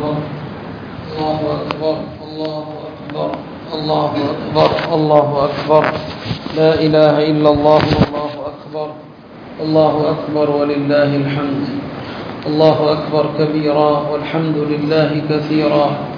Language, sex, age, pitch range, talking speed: Tamil, male, 40-59, 150-160 Hz, 95 wpm